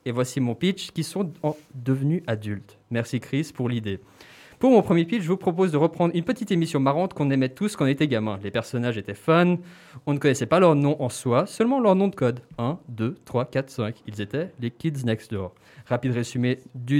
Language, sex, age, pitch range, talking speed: French, male, 20-39, 120-185 Hz, 220 wpm